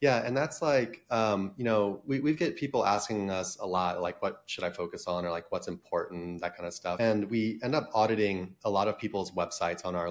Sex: male